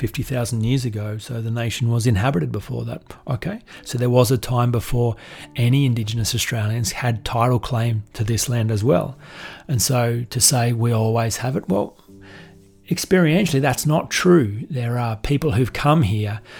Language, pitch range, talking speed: English, 115-135 Hz, 170 wpm